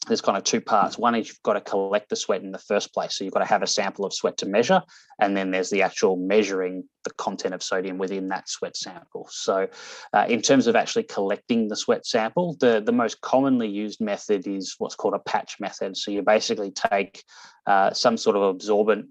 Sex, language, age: male, English, 20-39